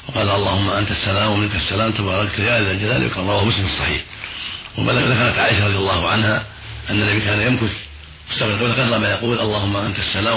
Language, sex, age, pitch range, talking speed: Arabic, male, 50-69, 95-110 Hz, 180 wpm